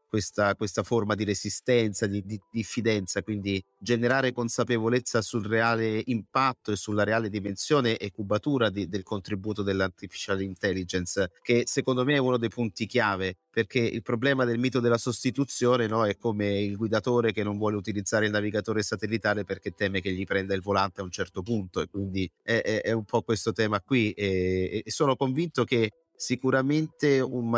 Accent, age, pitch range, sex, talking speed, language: native, 30-49, 100-120 Hz, male, 170 wpm, Italian